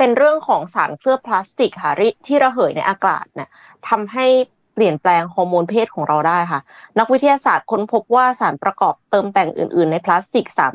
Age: 20-39